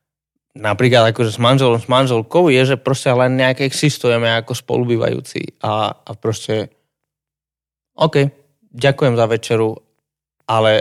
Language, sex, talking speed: Slovak, male, 120 wpm